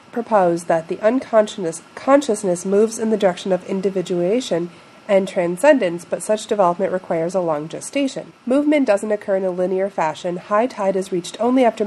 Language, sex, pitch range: English, female, 180-230 Hz